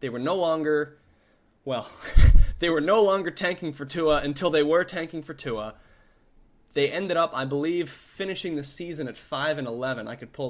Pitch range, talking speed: 125-160 Hz, 190 wpm